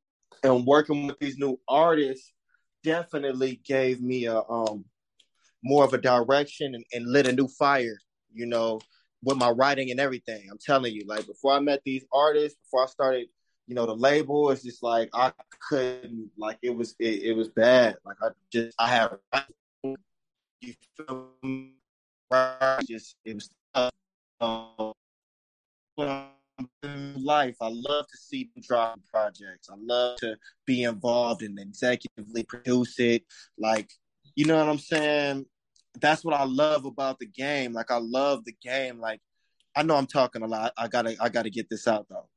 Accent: American